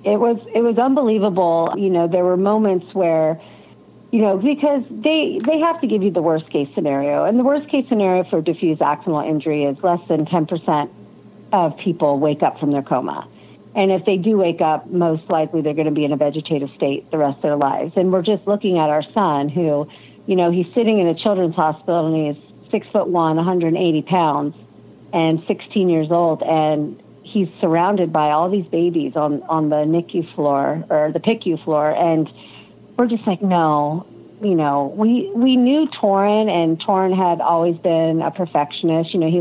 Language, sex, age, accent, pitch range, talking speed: English, female, 50-69, American, 155-195 Hz, 200 wpm